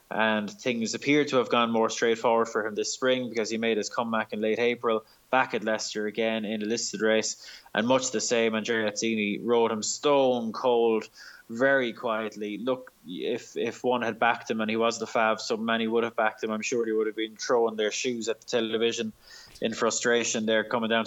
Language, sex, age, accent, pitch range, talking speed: English, male, 20-39, Irish, 110-130 Hz, 210 wpm